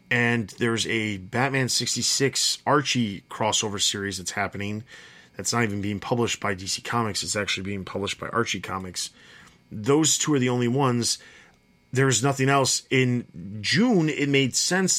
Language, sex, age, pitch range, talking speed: English, male, 30-49, 105-135 Hz, 155 wpm